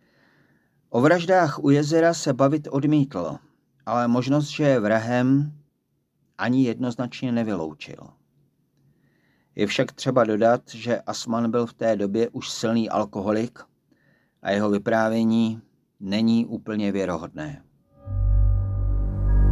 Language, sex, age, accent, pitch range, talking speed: Czech, male, 50-69, native, 110-145 Hz, 105 wpm